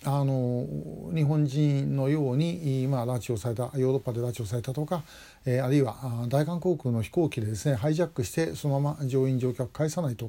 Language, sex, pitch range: Japanese, male, 125-150 Hz